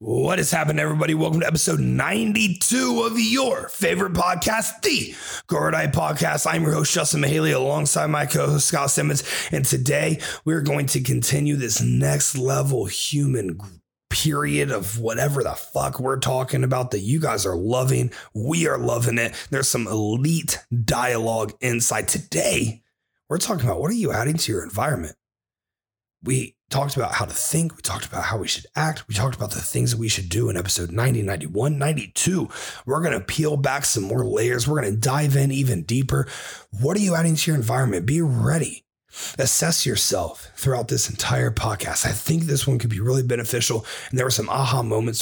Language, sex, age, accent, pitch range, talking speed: English, male, 30-49, American, 115-150 Hz, 185 wpm